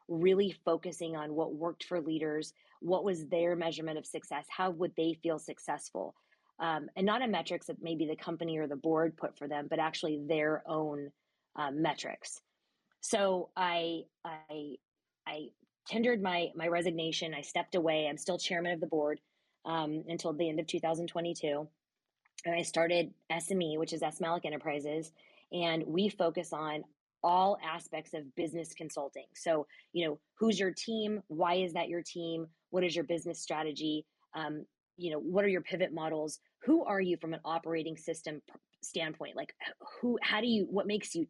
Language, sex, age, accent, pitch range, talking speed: English, female, 20-39, American, 155-175 Hz, 175 wpm